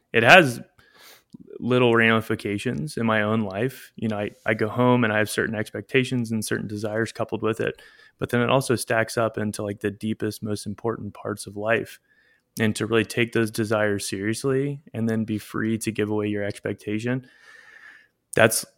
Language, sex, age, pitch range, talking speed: English, male, 20-39, 105-120 Hz, 180 wpm